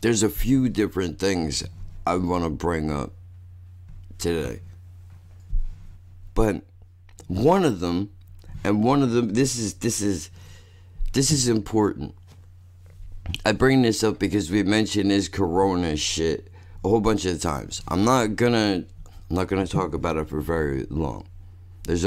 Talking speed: 145 wpm